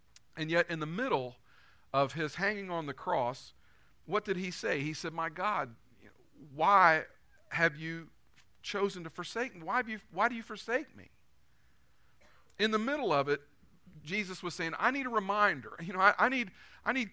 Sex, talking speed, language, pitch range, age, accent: male, 180 wpm, English, 140-195 Hz, 50-69, American